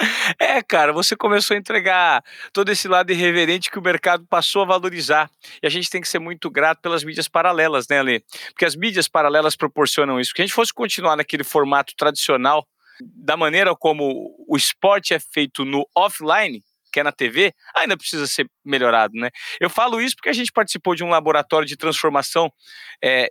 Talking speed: 190 wpm